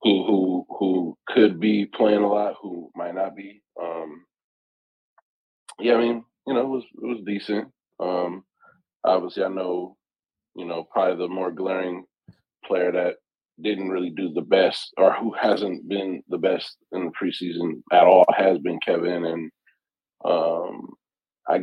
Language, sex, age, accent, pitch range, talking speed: English, male, 20-39, American, 85-100 Hz, 160 wpm